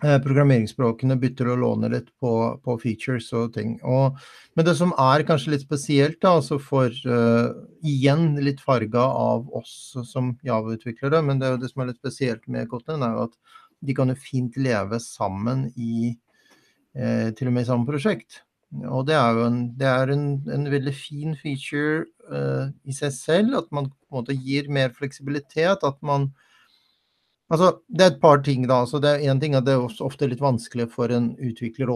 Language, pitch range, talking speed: English, 115-140 Hz, 195 wpm